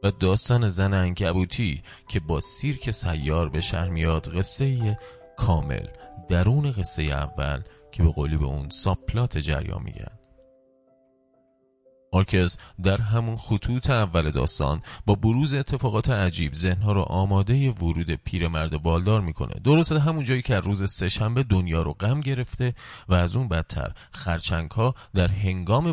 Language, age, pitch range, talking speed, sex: Persian, 30-49, 85-125 Hz, 150 wpm, male